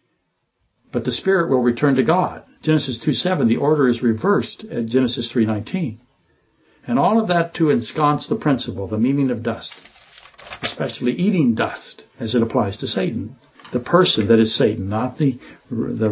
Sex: male